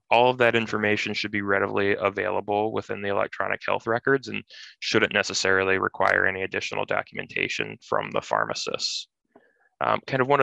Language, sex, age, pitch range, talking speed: English, male, 20-39, 95-105 Hz, 150 wpm